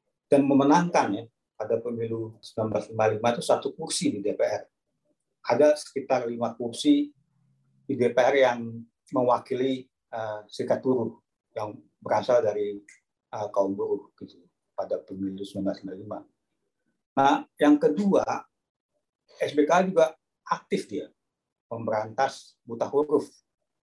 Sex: male